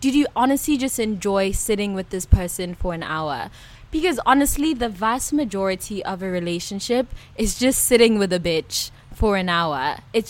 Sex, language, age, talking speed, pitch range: female, English, 20-39, 175 wpm, 180-230 Hz